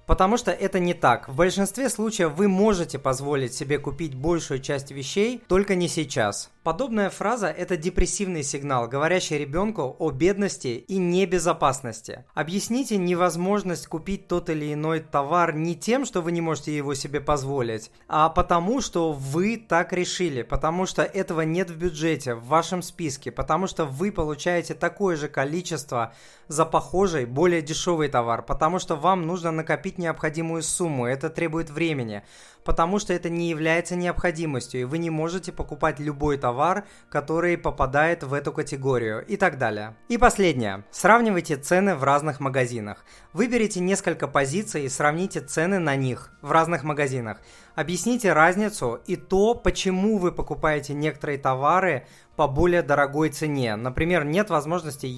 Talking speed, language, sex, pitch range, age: 150 wpm, Russian, male, 140-180 Hz, 20-39